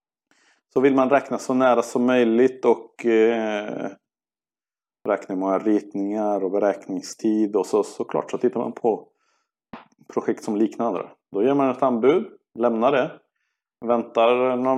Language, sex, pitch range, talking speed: Swedish, male, 105-130 Hz, 140 wpm